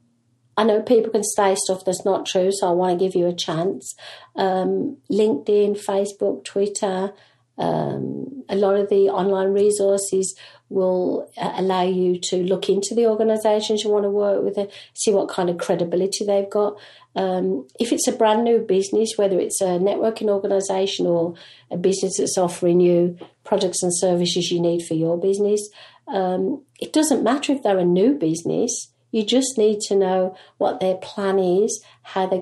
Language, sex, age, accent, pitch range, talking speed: English, female, 50-69, British, 180-210 Hz, 175 wpm